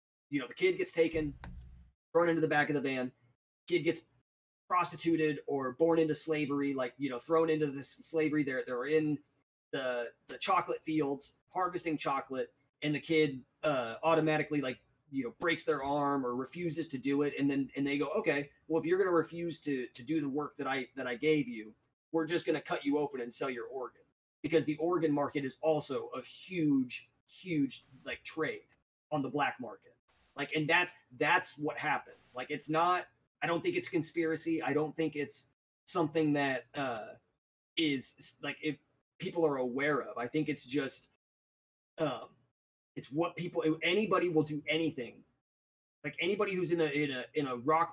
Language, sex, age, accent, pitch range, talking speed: English, male, 30-49, American, 135-160 Hz, 190 wpm